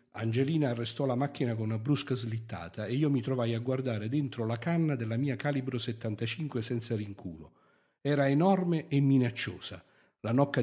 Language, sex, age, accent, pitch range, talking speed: Italian, male, 50-69, native, 105-140 Hz, 165 wpm